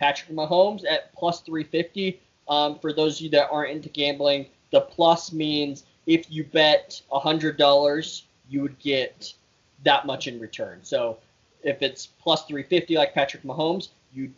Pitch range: 140-175 Hz